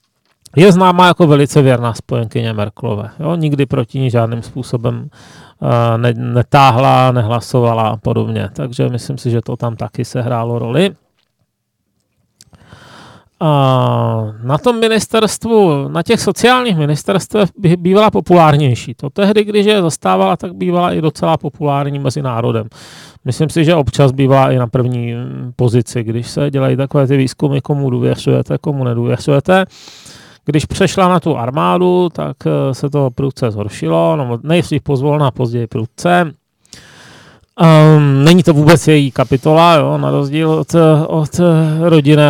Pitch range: 125-165 Hz